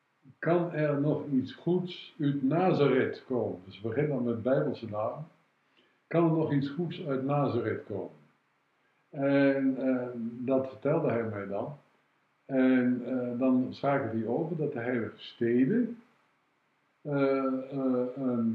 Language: Dutch